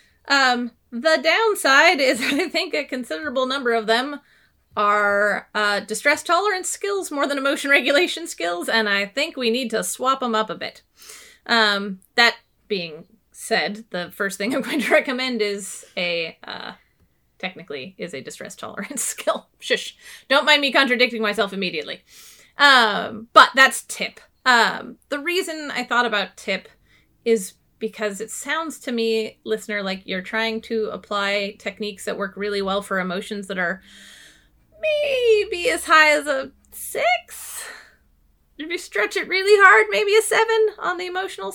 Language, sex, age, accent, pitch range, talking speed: English, female, 30-49, American, 200-295 Hz, 155 wpm